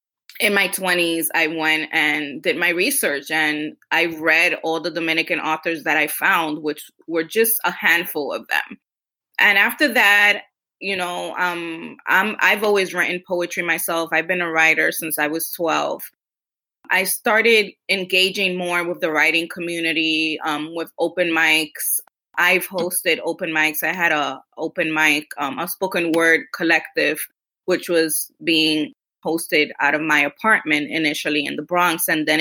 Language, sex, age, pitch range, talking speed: English, female, 20-39, 155-185 Hz, 160 wpm